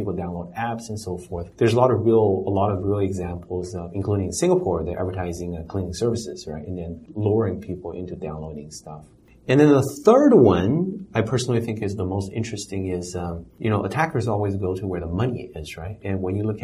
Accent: American